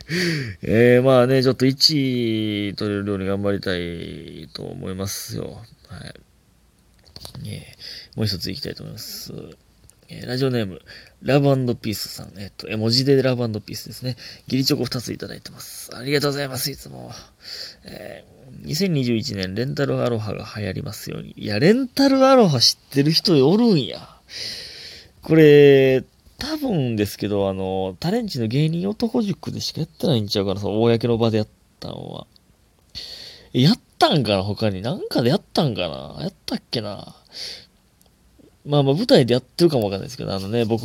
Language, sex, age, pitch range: Japanese, male, 20-39, 105-145 Hz